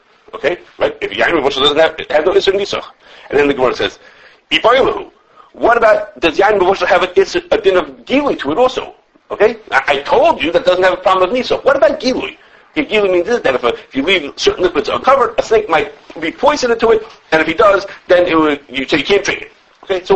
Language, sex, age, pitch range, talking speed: English, male, 50-69, 185-295 Hz, 245 wpm